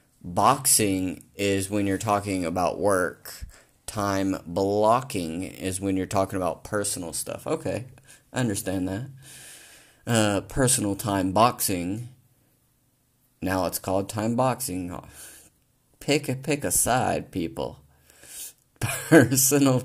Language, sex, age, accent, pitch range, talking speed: English, male, 30-49, American, 95-110 Hz, 105 wpm